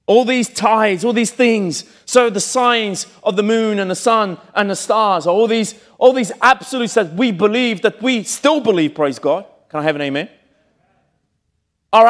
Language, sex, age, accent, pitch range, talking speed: Italian, male, 30-49, British, 170-235 Hz, 190 wpm